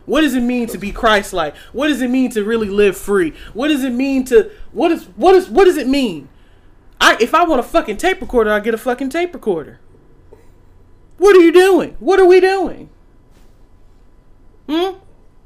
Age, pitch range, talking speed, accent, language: 30-49, 180-280 Hz, 200 wpm, American, English